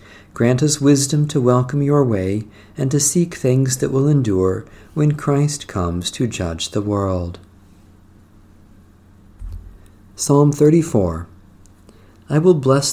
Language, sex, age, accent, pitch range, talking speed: English, male, 50-69, American, 100-135 Hz, 120 wpm